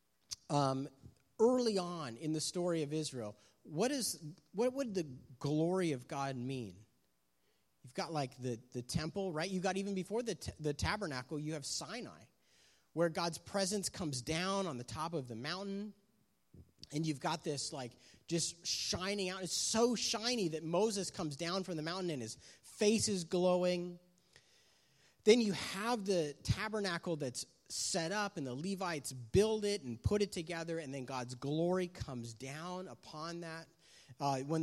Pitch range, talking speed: 135-185 Hz, 170 wpm